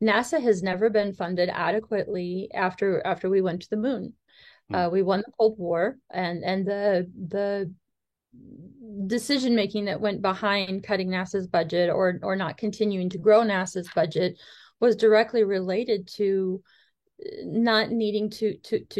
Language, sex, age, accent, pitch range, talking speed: English, female, 30-49, American, 195-225 Hz, 150 wpm